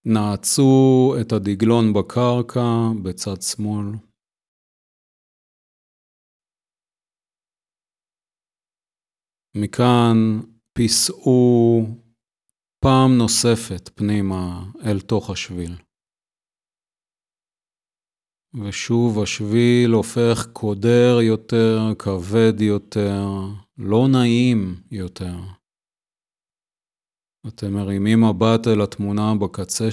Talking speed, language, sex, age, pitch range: 60 wpm, Hebrew, male, 40-59, 100-120 Hz